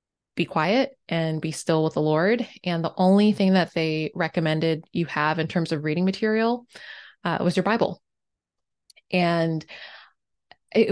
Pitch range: 170-230 Hz